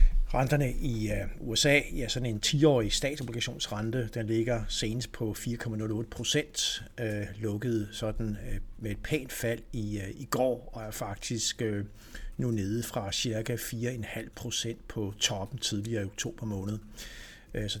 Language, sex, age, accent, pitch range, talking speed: Danish, male, 60-79, native, 105-120 Hz, 145 wpm